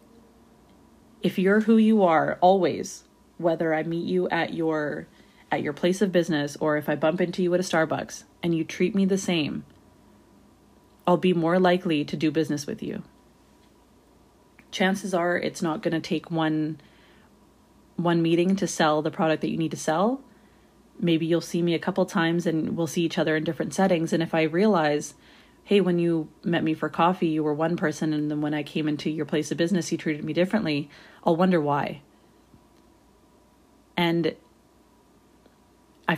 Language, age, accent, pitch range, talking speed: English, 30-49, American, 160-180 Hz, 180 wpm